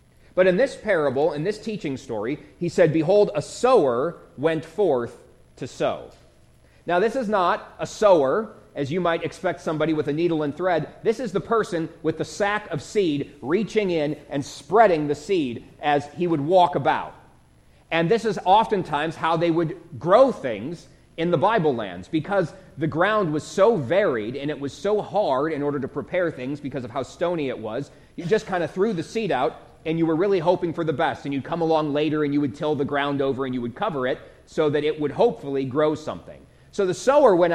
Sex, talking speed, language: male, 210 wpm, English